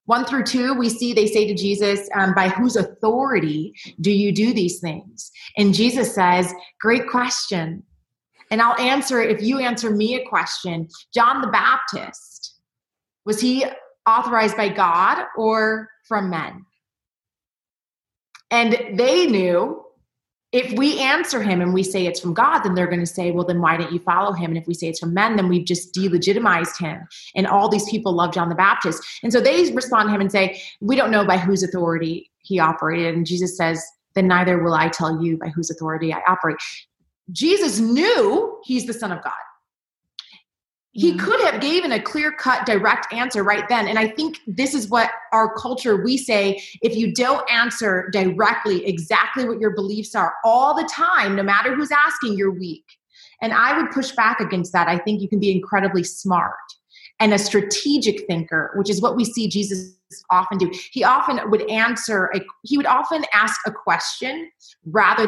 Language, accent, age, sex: English, American, 30-49, female